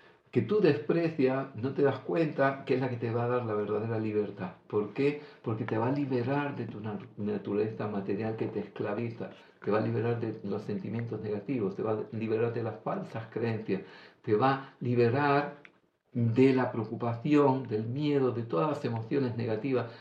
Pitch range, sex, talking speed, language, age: 115-145 Hz, male, 185 wpm, Greek, 50-69